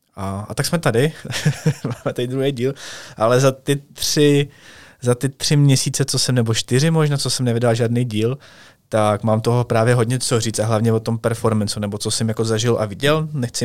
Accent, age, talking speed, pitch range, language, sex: native, 20-39, 205 wpm, 110-130 Hz, Czech, male